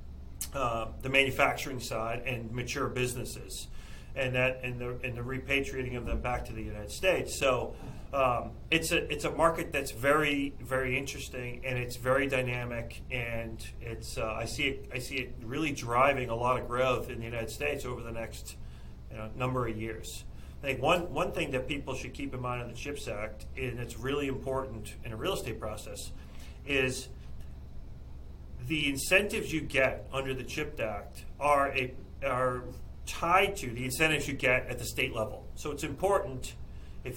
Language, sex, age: English, male, 40-59